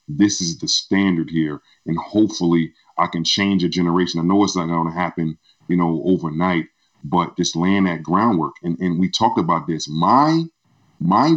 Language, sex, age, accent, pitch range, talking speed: English, male, 40-59, American, 90-135 Hz, 185 wpm